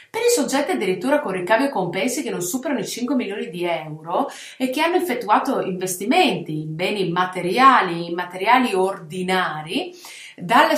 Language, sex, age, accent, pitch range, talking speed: Italian, female, 30-49, native, 185-275 Hz, 155 wpm